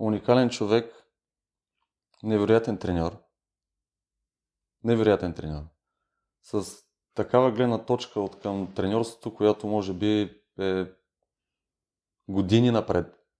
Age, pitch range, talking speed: 30-49, 90-110 Hz, 85 wpm